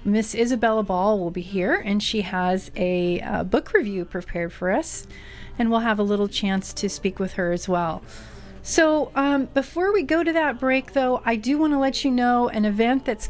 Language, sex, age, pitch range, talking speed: English, female, 40-59, 200-260 Hz, 210 wpm